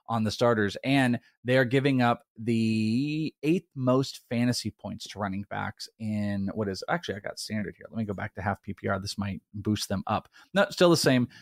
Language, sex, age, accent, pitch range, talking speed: English, male, 30-49, American, 105-135 Hz, 205 wpm